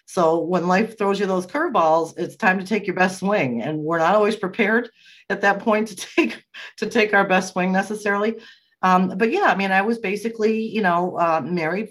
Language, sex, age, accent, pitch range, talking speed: English, female, 40-59, American, 155-200 Hz, 210 wpm